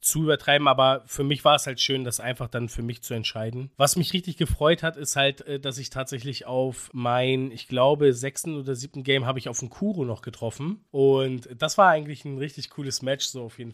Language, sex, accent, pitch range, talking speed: German, male, German, 135-165 Hz, 225 wpm